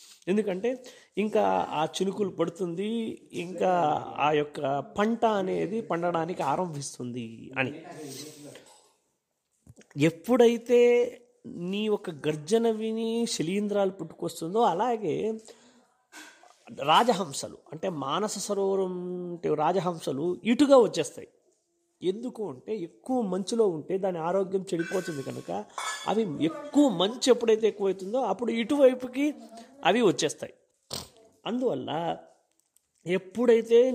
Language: Telugu